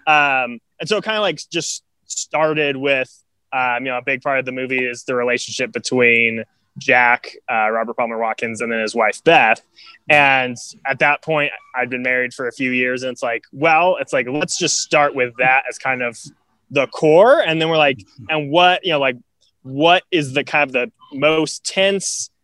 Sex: male